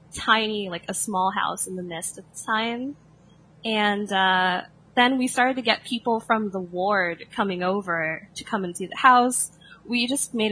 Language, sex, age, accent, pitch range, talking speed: English, female, 10-29, American, 180-235 Hz, 190 wpm